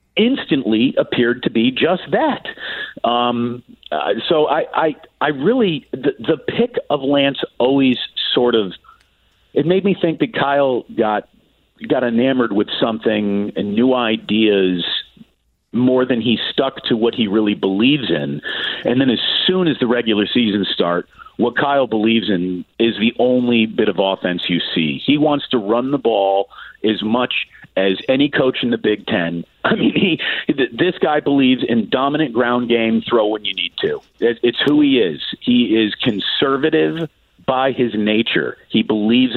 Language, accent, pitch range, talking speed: English, American, 105-140 Hz, 165 wpm